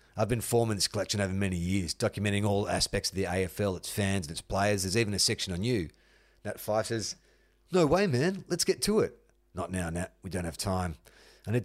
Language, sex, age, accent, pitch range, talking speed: English, male, 40-59, Australian, 95-120 Hz, 225 wpm